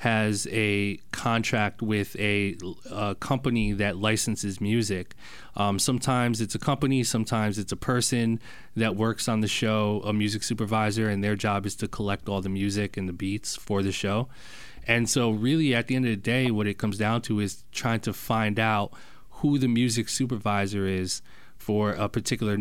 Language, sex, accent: English, male, American